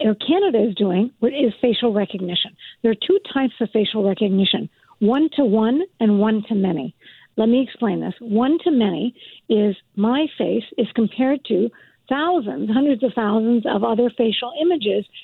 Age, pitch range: 50-69, 210-260 Hz